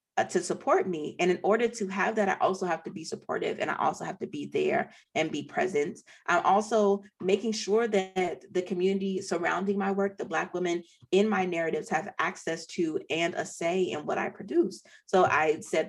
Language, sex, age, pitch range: English, female, 30-49, 175-230 Hz